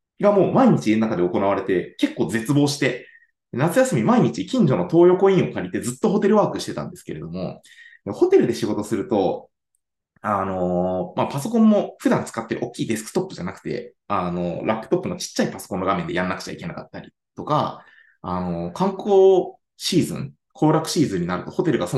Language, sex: Japanese, male